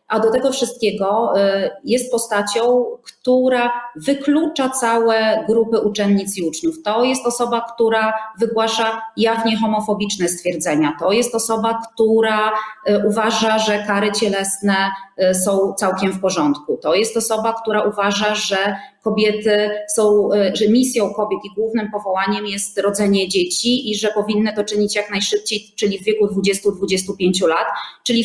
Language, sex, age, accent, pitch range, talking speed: Polish, female, 30-49, native, 195-230 Hz, 135 wpm